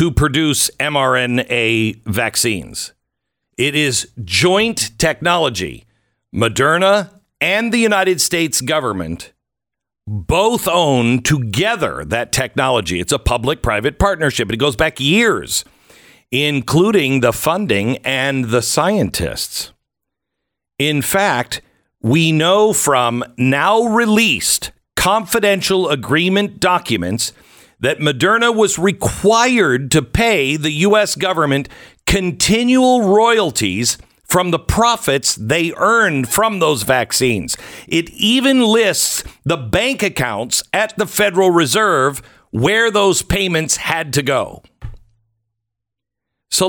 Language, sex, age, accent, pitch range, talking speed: English, male, 50-69, American, 120-195 Hz, 105 wpm